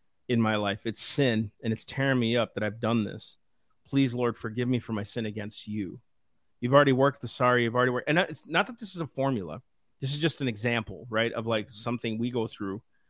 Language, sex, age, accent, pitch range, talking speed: English, male, 40-59, American, 115-145 Hz, 235 wpm